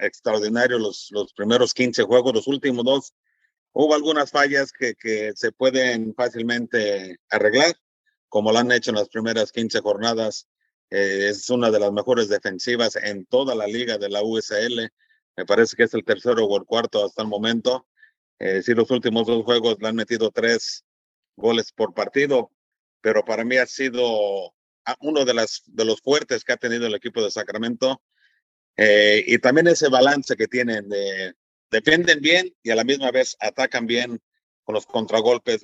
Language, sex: English, male